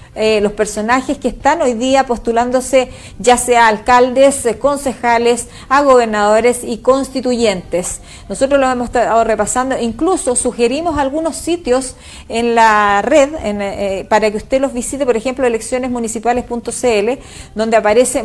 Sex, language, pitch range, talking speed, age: female, Spanish, 210-260 Hz, 140 wpm, 40-59